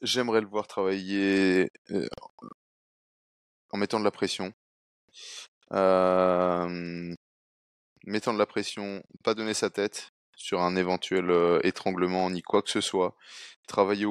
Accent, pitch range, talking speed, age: French, 90-110 Hz, 120 wpm, 20-39